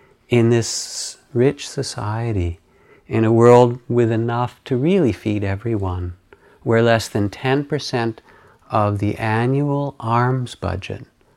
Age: 50-69